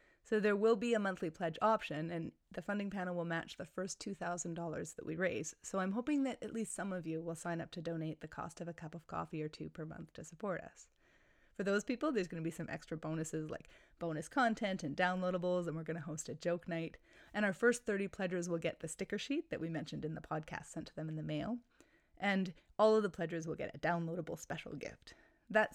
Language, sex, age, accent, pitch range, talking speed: English, female, 30-49, American, 165-205 Hz, 245 wpm